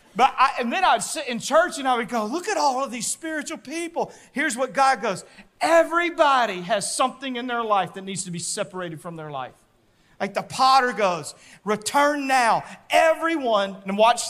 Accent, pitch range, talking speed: American, 160-240 Hz, 195 wpm